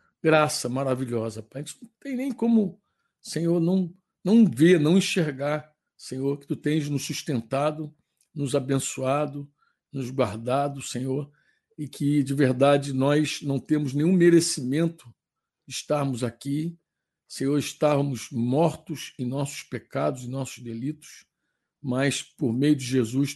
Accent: Brazilian